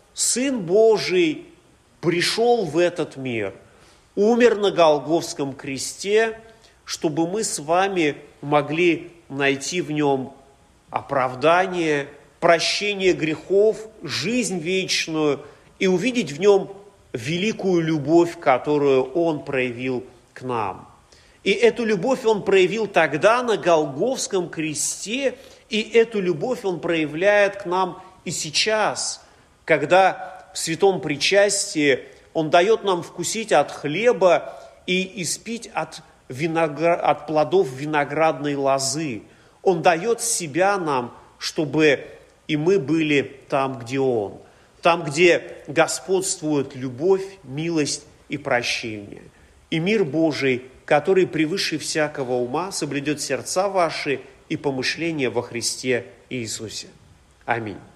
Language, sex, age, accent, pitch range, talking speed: Russian, male, 40-59, native, 145-195 Hz, 110 wpm